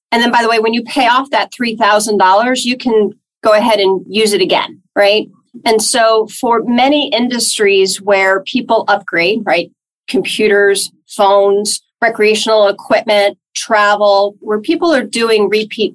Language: English